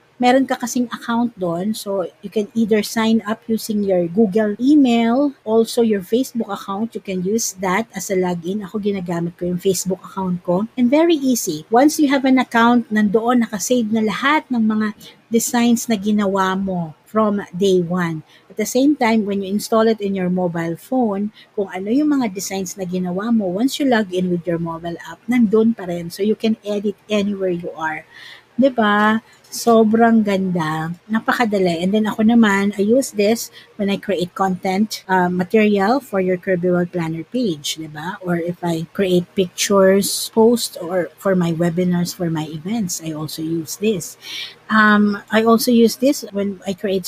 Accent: native